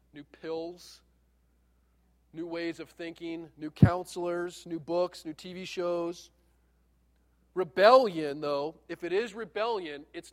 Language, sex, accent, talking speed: English, male, American, 115 wpm